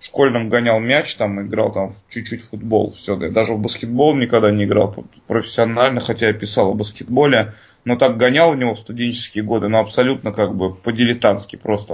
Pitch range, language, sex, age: 105-120 Hz, Russian, male, 20-39